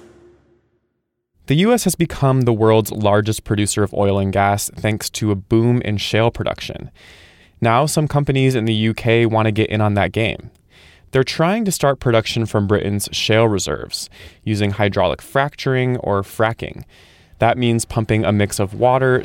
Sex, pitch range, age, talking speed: male, 100-125 Hz, 20-39, 165 wpm